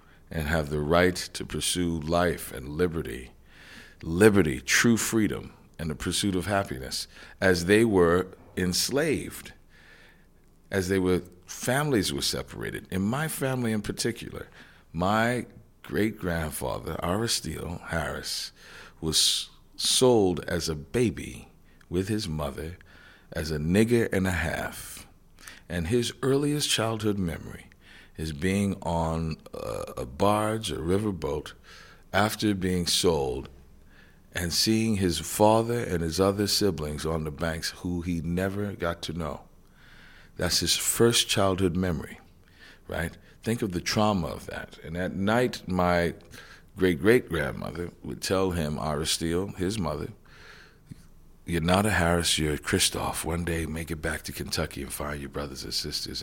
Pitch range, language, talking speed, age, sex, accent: 80-100 Hz, English, 130 wpm, 50-69, male, American